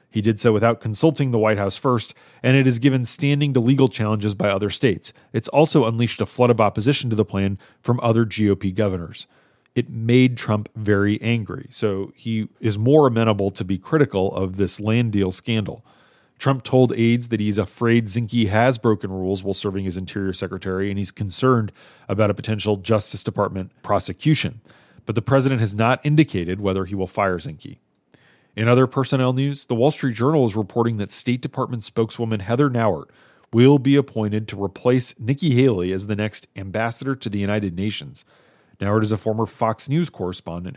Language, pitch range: English, 100-130 Hz